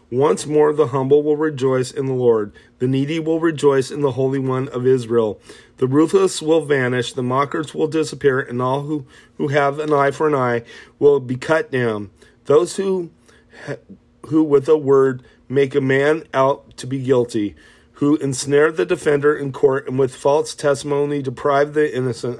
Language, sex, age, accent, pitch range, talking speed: English, male, 40-59, American, 125-150 Hz, 180 wpm